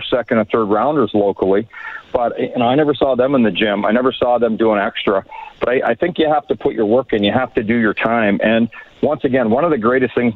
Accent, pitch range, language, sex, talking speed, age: American, 110-130 Hz, English, male, 255 wpm, 50-69